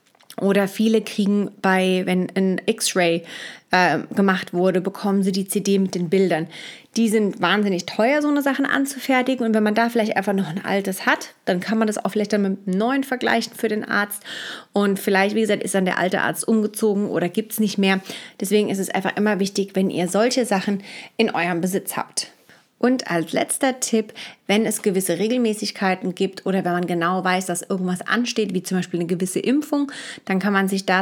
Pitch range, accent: 185-220 Hz, German